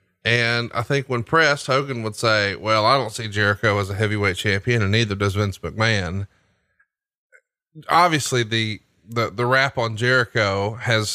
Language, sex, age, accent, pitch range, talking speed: English, male, 30-49, American, 105-135 Hz, 160 wpm